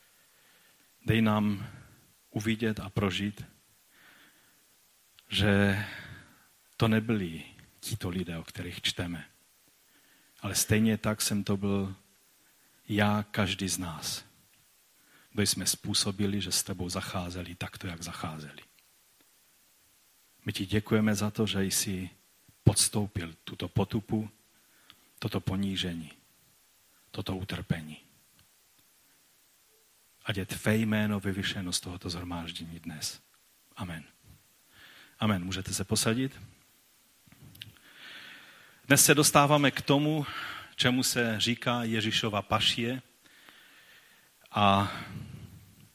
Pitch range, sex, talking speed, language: 95-115 Hz, male, 95 wpm, Czech